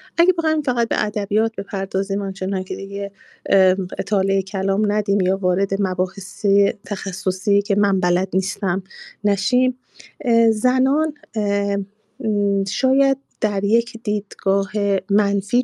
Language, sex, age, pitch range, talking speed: Persian, female, 30-49, 190-225 Hz, 105 wpm